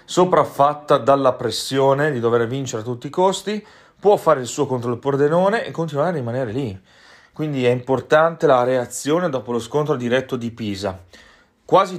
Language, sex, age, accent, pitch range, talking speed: Italian, male, 30-49, native, 115-150 Hz, 170 wpm